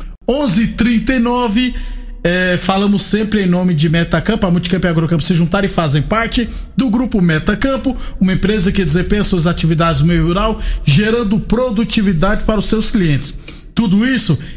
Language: Portuguese